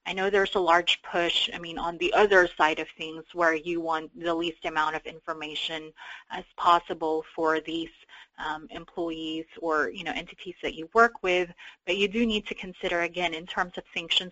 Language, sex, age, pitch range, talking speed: English, female, 20-39, 160-185 Hz, 190 wpm